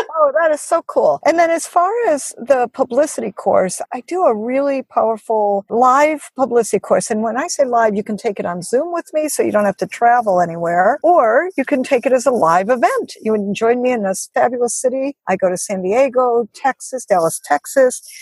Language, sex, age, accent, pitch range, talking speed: English, female, 50-69, American, 210-275 Hz, 215 wpm